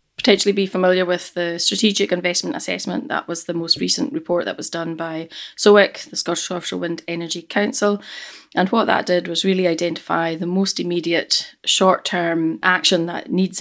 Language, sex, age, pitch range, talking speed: English, female, 30-49, 165-185 Hz, 170 wpm